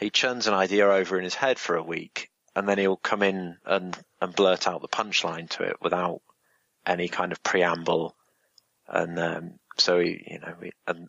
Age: 30-49